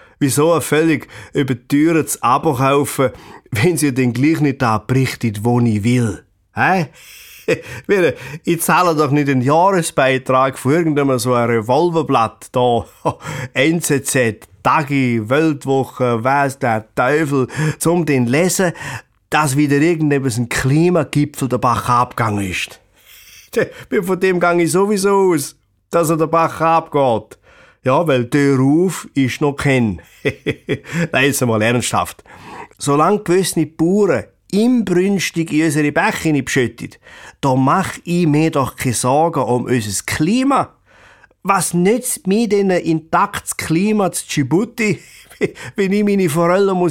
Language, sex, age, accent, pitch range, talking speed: German, male, 30-49, German, 125-165 Hz, 130 wpm